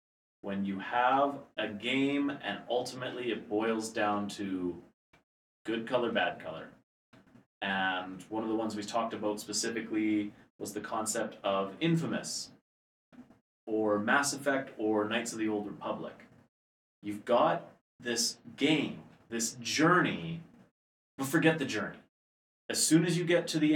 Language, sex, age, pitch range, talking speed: English, male, 30-49, 105-155 Hz, 140 wpm